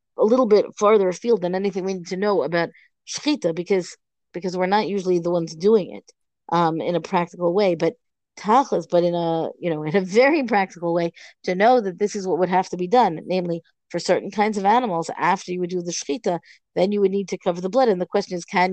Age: 40-59